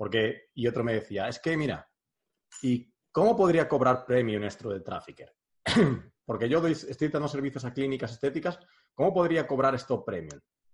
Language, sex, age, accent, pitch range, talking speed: Spanish, male, 30-49, Spanish, 115-150 Hz, 170 wpm